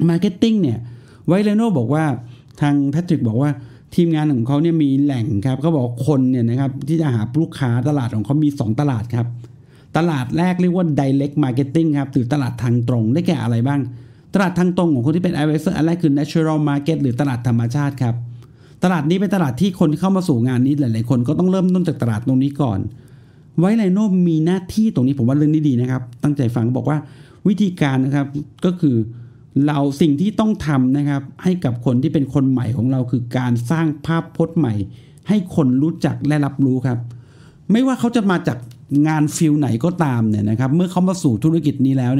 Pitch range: 130-165 Hz